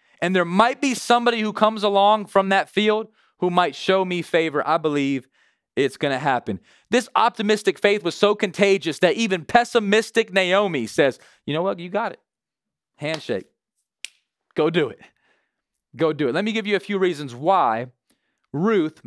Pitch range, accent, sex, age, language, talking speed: 180-230 Hz, American, male, 30-49, English, 175 wpm